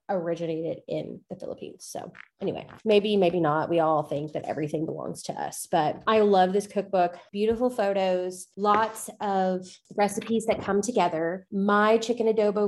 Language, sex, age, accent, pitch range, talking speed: English, female, 20-39, American, 180-220 Hz, 155 wpm